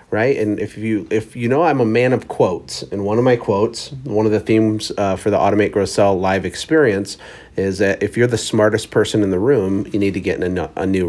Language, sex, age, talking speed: English, male, 40-59, 260 wpm